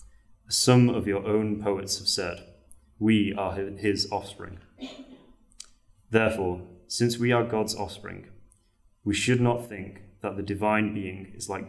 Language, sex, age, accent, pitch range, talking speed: English, male, 30-49, British, 95-115 Hz, 140 wpm